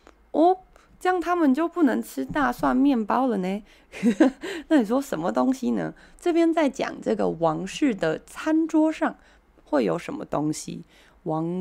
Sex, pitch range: female, 165-275 Hz